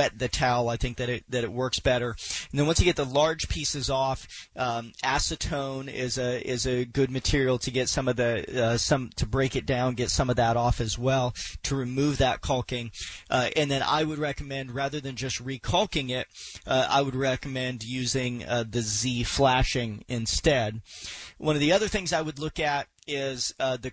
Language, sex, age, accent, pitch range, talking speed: English, male, 40-59, American, 120-140 Hz, 205 wpm